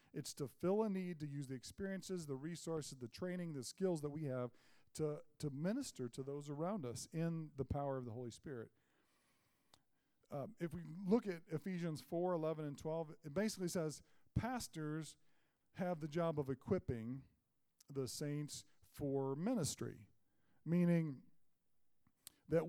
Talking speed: 150 wpm